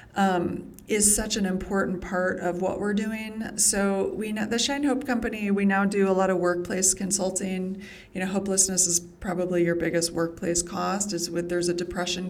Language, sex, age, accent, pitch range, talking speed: English, female, 30-49, American, 180-195 Hz, 190 wpm